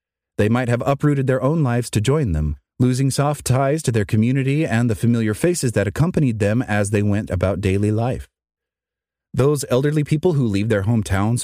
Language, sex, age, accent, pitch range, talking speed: English, male, 30-49, American, 95-130 Hz, 190 wpm